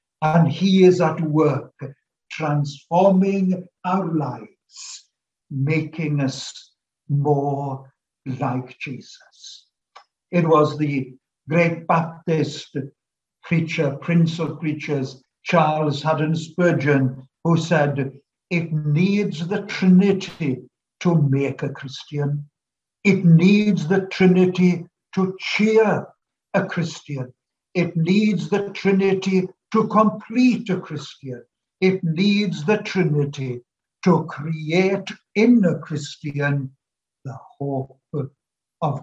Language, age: English, 60-79